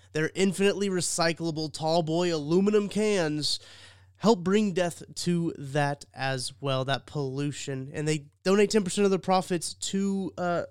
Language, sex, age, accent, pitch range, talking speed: English, male, 20-39, American, 130-155 Hz, 140 wpm